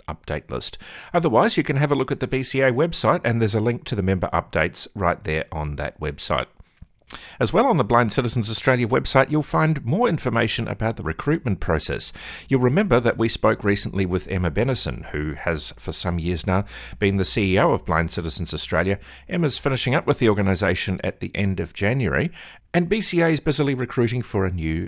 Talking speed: 200 wpm